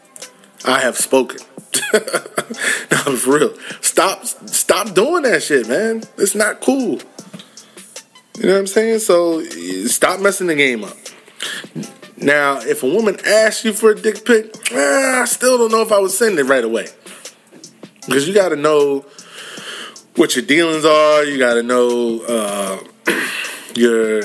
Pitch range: 120-205 Hz